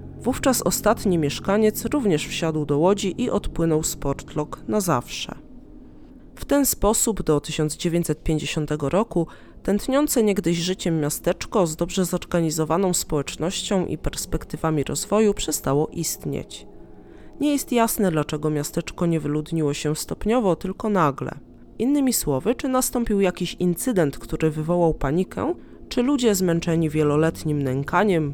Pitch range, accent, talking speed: 155-205 Hz, native, 120 wpm